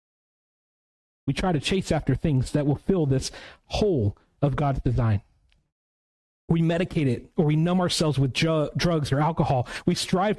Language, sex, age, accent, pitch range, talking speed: English, male, 40-59, American, 130-175 Hz, 155 wpm